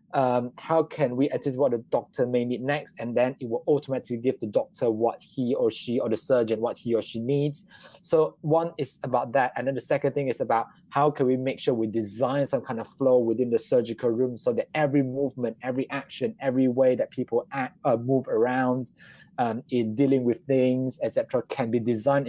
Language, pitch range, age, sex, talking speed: English, 125-145 Hz, 20-39, male, 220 wpm